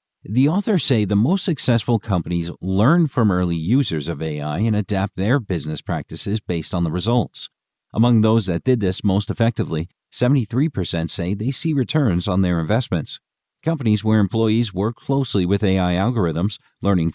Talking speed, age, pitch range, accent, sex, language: 160 wpm, 50-69, 90-125 Hz, American, male, English